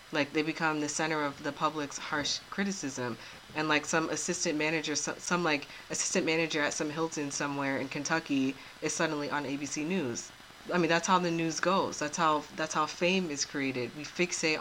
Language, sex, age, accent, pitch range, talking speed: English, female, 20-39, American, 140-160 Hz, 195 wpm